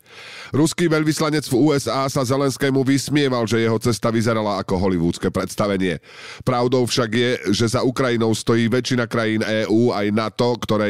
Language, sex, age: Slovak, male, 40-59